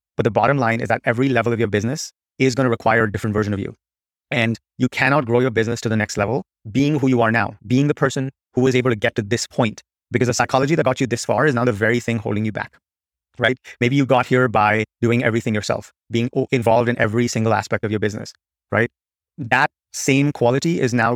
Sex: male